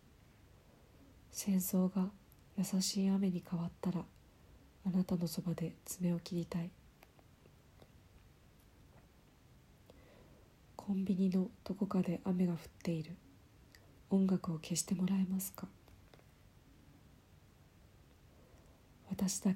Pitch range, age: 170-190 Hz, 40-59